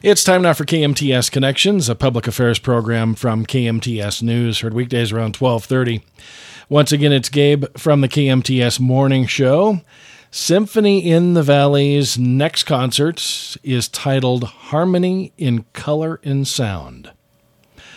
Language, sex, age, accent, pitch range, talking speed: English, male, 50-69, American, 110-140 Hz, 130 wpm